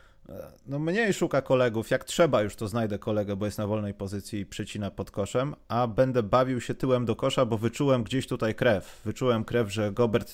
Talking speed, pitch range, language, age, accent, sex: 205 wpm, 100-130 Hz, Polish, 30-49, native, male